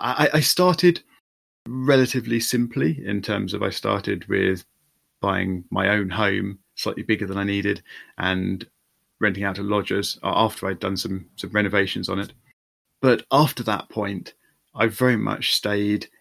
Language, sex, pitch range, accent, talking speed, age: English, male, 95-115 Hz, British, 150 wpm, 30-49